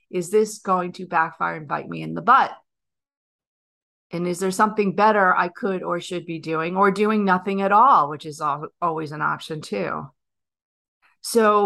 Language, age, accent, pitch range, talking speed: English, 40-59, American, 170-210 Hz, 175 wpm